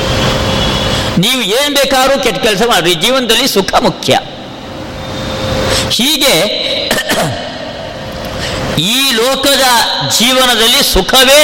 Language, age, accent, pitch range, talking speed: Kannada, 50-69, native, 175-255 Hz, 75 wpm